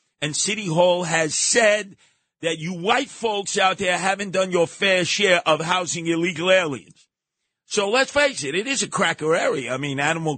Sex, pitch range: male, 130-180 Hz